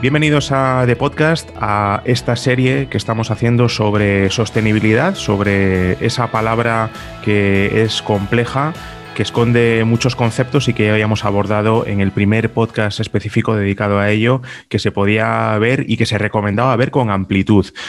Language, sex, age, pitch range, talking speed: Spanish, male, 30-49, 105-120 Hz, 150 wpm